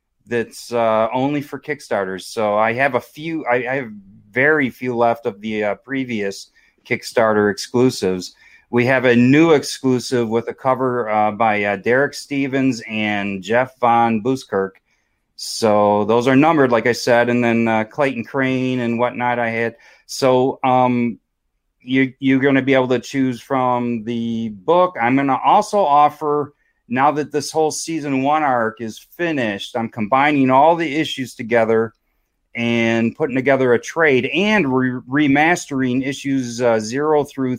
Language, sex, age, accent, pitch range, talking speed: English, male, 30-49, American, 115-140 Hz, 160 wpm